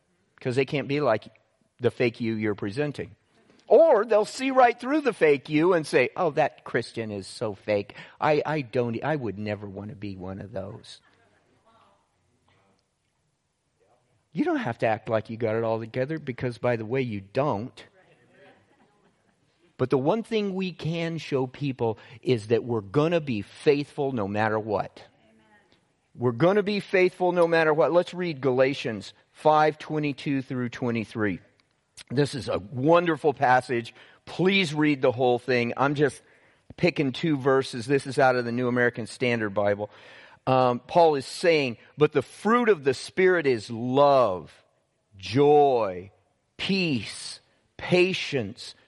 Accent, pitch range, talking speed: American, 115-155 Hz, 155 wpm